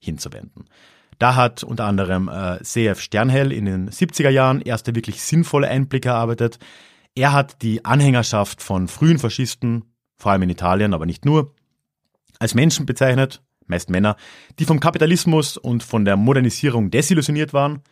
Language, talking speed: German, 150 wpm